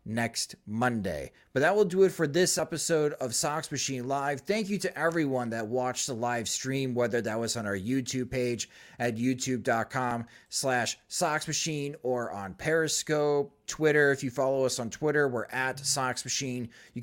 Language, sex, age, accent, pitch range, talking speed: English, male, 30-49, American, 125-165 Hz, 175 wpm